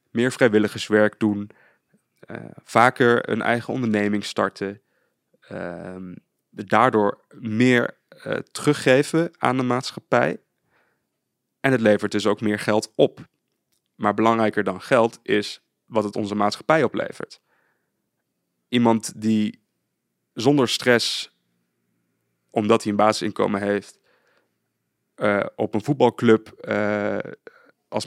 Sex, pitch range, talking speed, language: male, 105-115 Hz, 105 wpm, Dutch